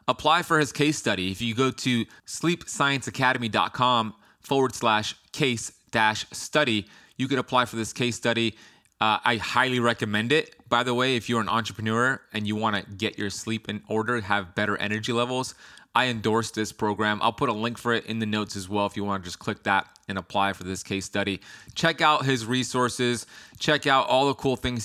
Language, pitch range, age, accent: English, 105-125 Hz, 20-39, American